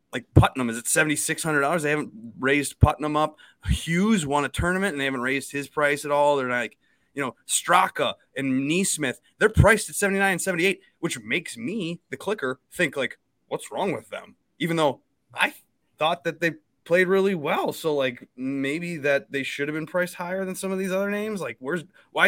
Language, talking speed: English, 200 wpm